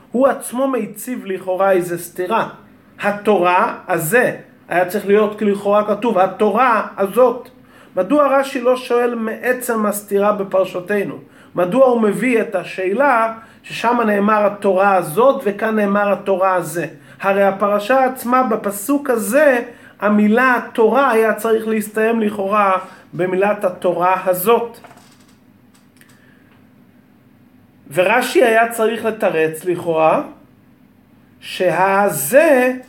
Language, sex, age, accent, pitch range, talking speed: Hebrew, male, 40-59, native, 185-240 Hz, 100 wpm